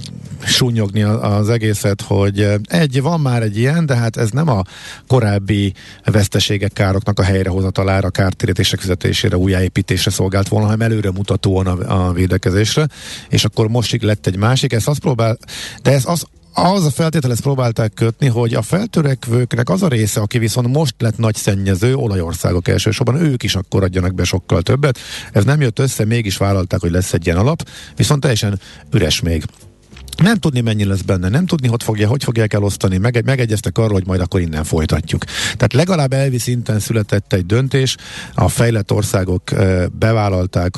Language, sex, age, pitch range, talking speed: Hungarian, male, 50-69, 95-125 Hz, 170 wpm